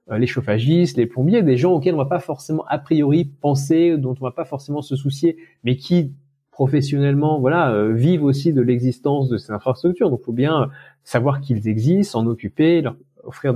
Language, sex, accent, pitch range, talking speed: French, male, French, 125-155 Hz, 200 wpm